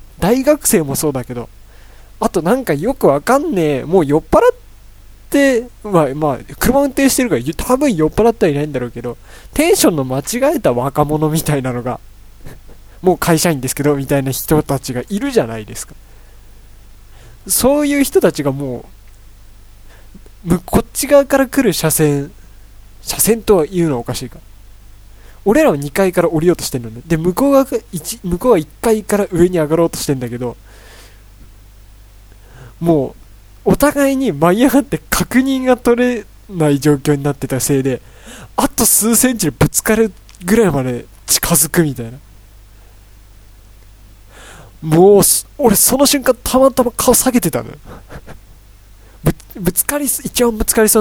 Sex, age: male, 20-39